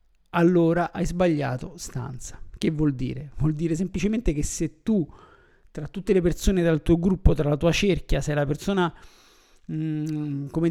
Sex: male